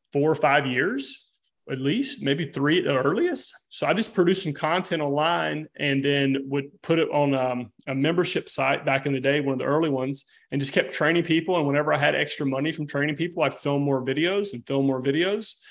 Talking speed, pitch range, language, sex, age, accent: 225 wpm, 135-170 Hz, English, male, 30-49, American